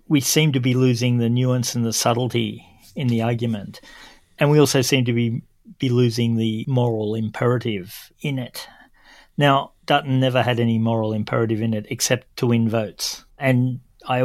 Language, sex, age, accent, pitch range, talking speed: English, male, 50-69, Australian, 115-135 Hz, 175 wpm